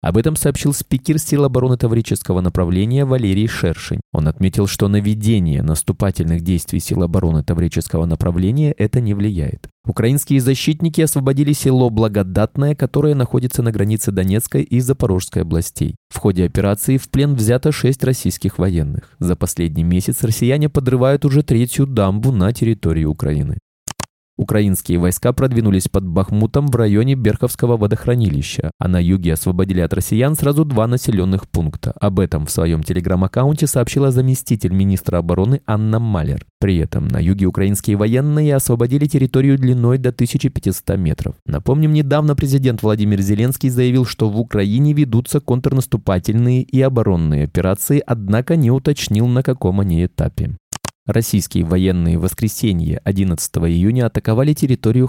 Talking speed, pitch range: 140 wpm, 90-130 Hz